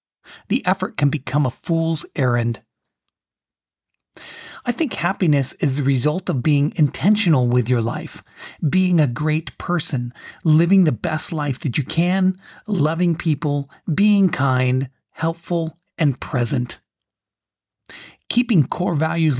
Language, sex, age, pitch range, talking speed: English, male, 40-59, 135-180 Hz, 125 wpm